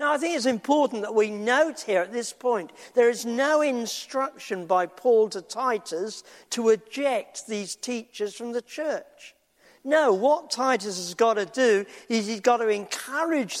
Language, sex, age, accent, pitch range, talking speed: English, male, 50-69, British, 200-255 Hz, 170 wpm